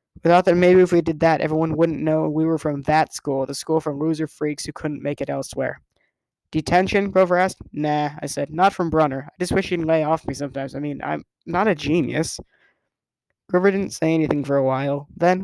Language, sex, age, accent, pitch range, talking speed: English, male, 20-39, American, 145-170 Hz, 225 wpm